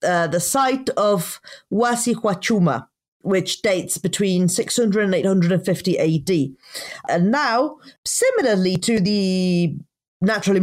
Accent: British